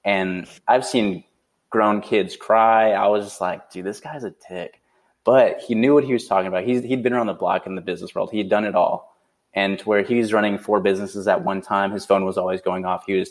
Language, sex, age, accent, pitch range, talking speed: English, male, 20-39, American, 95-110 Hz, 250 wpm